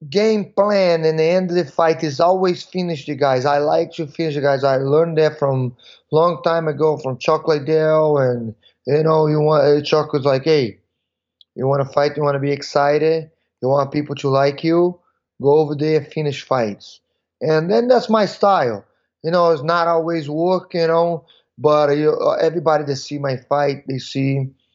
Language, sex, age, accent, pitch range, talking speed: English, male, 20-39, Brazilian, 130-160 Hz, 190 wpm